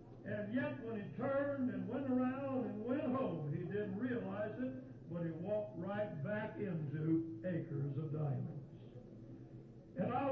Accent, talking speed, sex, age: American, 150 wpm, male, 60-79